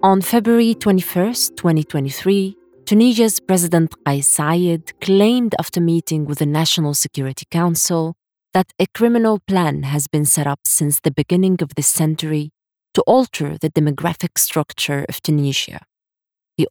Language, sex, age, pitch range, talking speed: English, female, 30-49, 150-190 Hz, 135 wpm